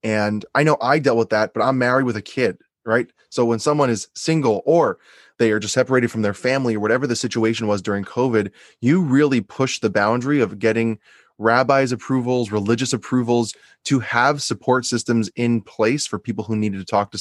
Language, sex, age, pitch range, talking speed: English, male, 20-39, 105-125 Hz, 200 wpm